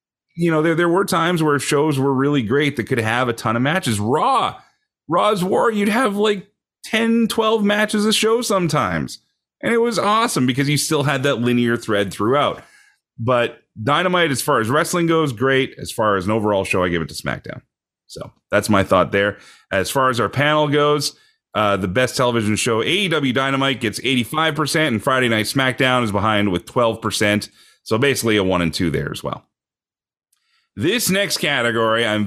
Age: 30-49